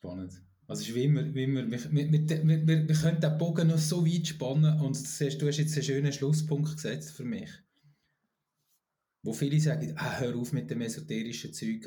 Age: 20-39